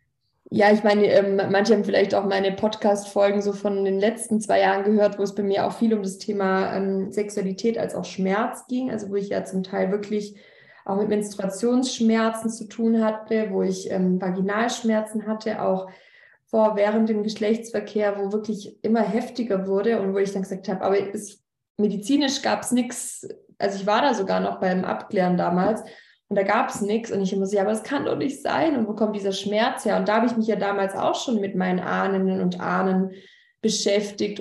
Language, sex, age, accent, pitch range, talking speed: German, female, 20-39, German, 195-220 Hz, 200 wpm